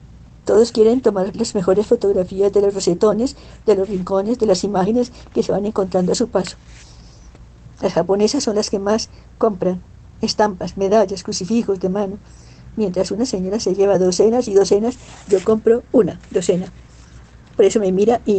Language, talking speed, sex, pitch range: Spanish, 165 wpm, female, 190-215 Hz